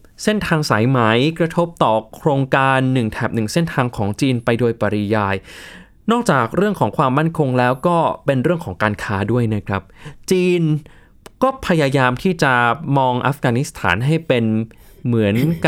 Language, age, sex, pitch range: Thai, 20-39, male, 115-165 Hz